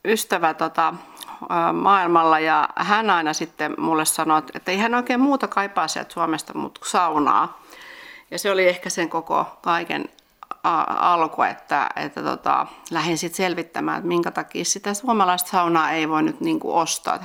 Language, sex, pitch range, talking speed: Finnish, female, 165-215 Hz, 155 wpm